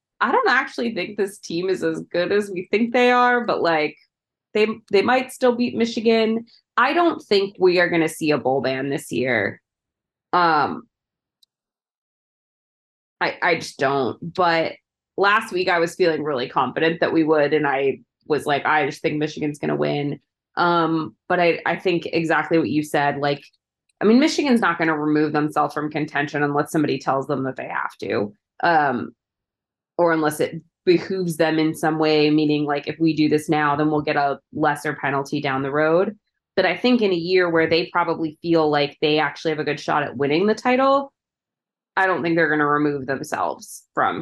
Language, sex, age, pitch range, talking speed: English, female, 20-39, 150-190 Hz, 195 wpm